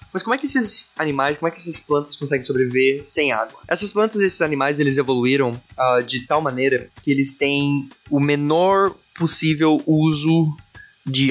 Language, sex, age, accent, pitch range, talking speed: Portuguese, male, 20-39, Brazilian, 125-155 Hz, 180 wpm